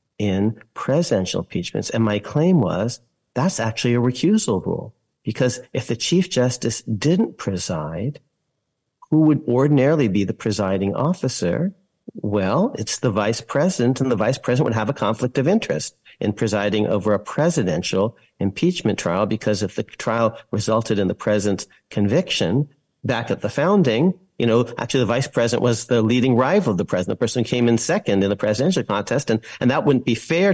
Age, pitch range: 50-69, 105-140 Hz